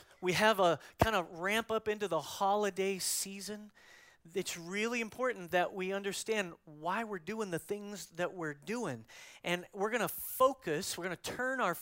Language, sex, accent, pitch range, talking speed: English, male, American, 160-205 Hz, 180 wpm